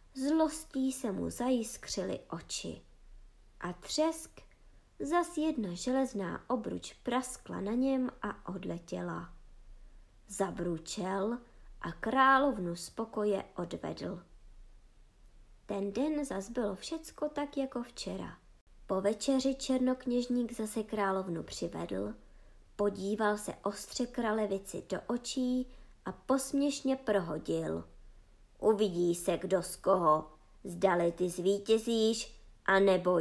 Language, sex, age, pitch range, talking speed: Czech, male, 20-39, 190-275 Hz, 95 wpm